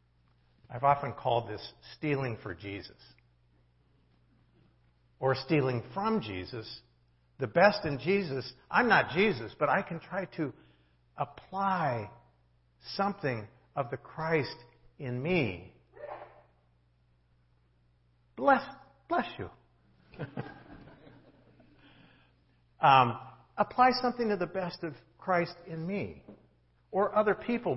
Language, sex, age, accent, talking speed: English, male, 50-69, American, 100 wpm